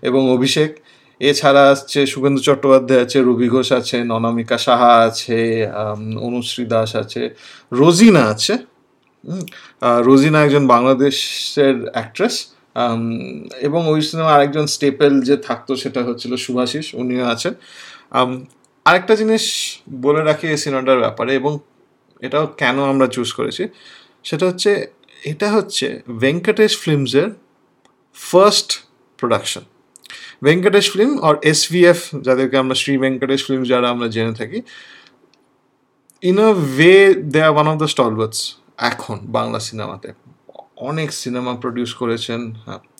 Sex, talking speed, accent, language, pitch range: male, 120 wpm, native, Bengali, 125-160 Hz